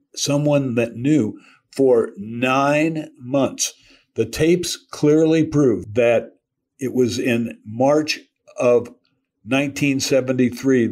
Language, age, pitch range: English, 60-79, 120-145 Hz